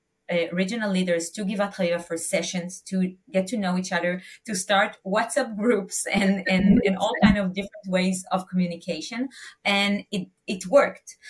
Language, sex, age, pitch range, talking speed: English, female, 30-49, 165-205 Hz, 175 wpm